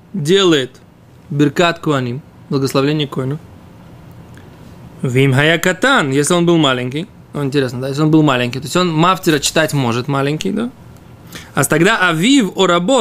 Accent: native